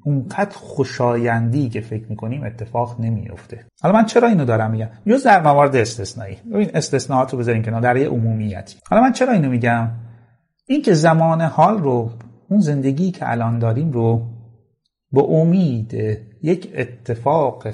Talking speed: 150 wpm